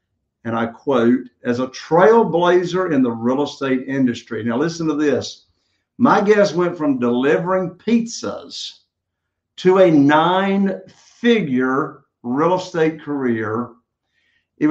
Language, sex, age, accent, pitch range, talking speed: English, male, 60-79, American, 135-205 Hz, 120 wpm